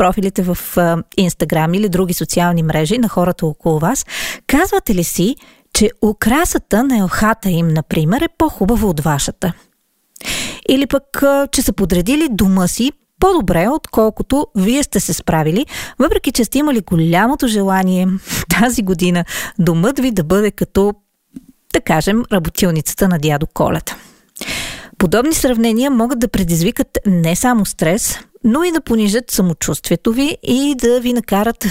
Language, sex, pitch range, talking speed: Bulgarian, female, 180-250 Hz, 140 wpm